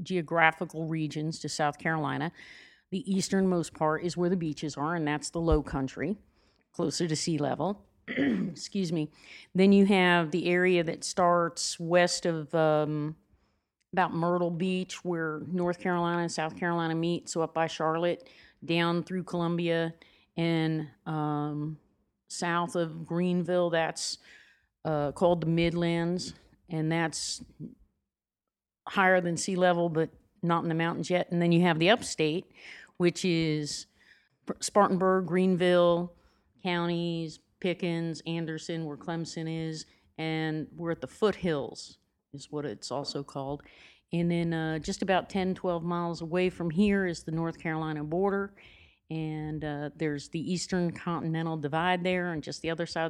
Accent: American